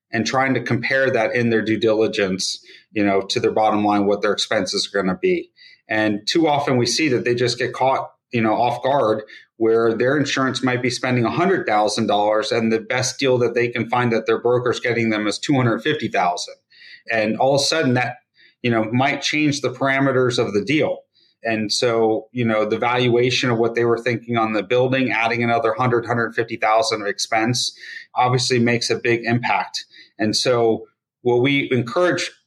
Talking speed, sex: 185 wpm, male